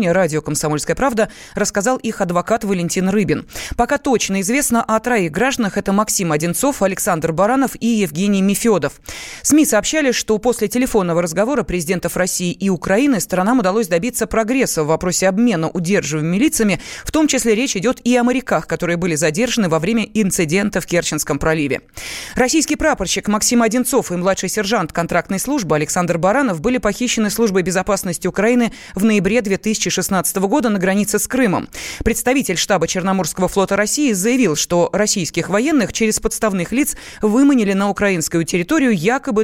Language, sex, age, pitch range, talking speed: Russian, female, 20-39, 180-235 Hz, 150 wpm